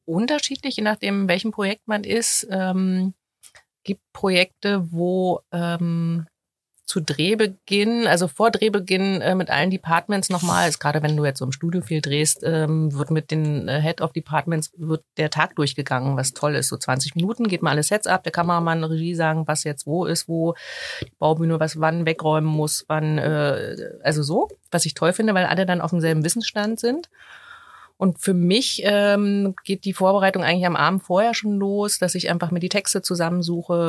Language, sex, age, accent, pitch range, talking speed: German, female, 30-49, German, 160-200 Hz, 180 wpm